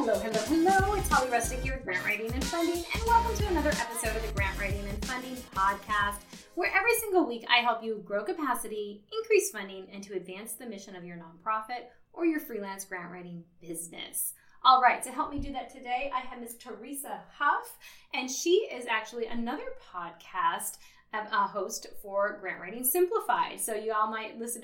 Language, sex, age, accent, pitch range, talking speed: English, female, 20-39, American, 200-285 Hz, 190 wpm